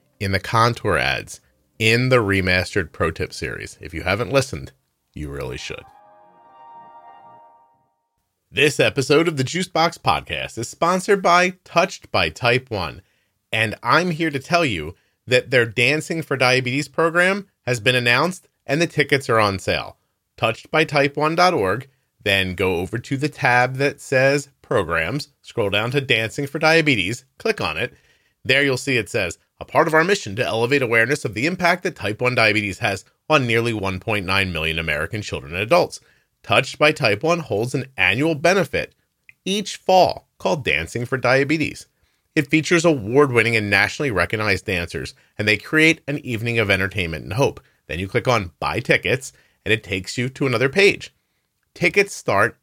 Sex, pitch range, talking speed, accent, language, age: male, 105-150 Hz, 165 wpm, American, English, 30-49